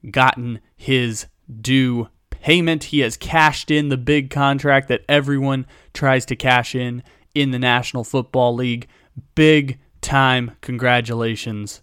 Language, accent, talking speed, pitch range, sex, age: English, American, 125 wpm, 115-140 Hz, male, 20-39